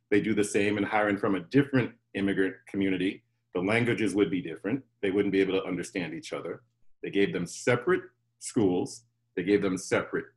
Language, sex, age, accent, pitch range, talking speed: English, male, 50-69, American, 95-120 Hz, 190 wpm